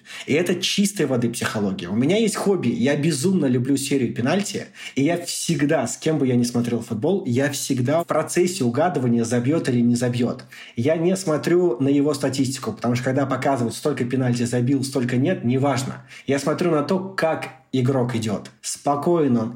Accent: native